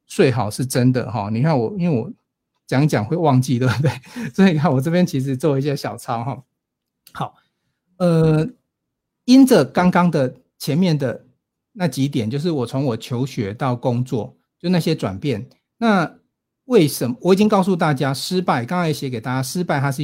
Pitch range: 125-180 Hz